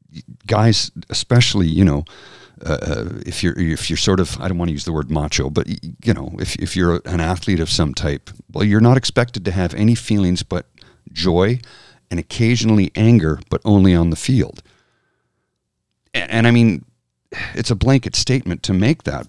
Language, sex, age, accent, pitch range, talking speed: English, male, 50-69, American, 80-110 Hz, 185 wpm